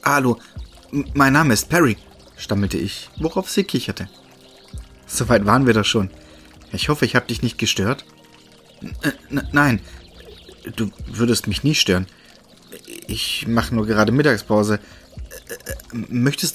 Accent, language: German, German